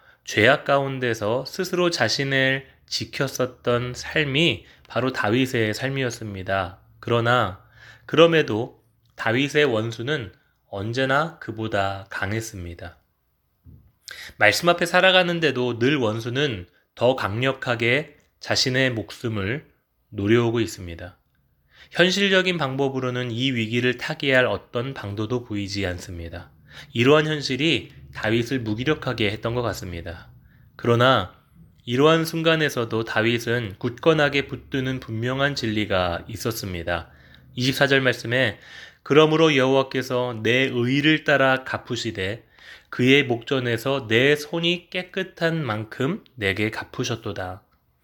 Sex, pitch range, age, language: male, 110-140 Hz, 20-39, Korean